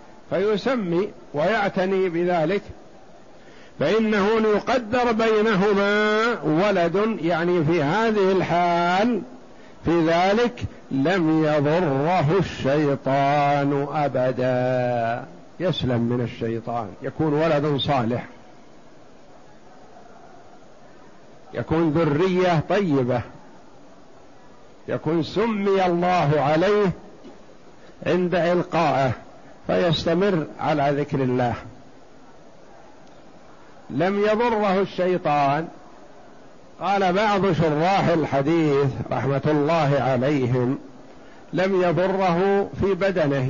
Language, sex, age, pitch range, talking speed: Arabic, male, 50-69, 145-190 Hz, 70 wpm